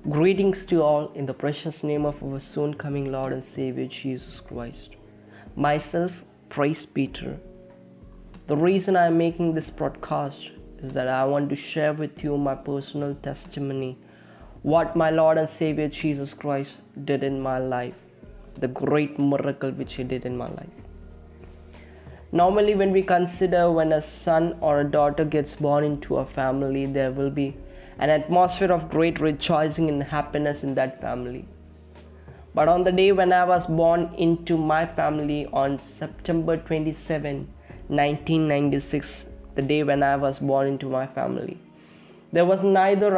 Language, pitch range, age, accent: English, 130-165 Hz, 20-39, Indian